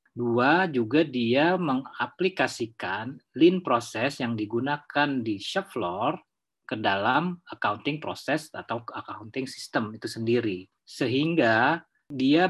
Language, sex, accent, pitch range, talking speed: English, male, Indonesian, 120-155 Hz, 105 wpm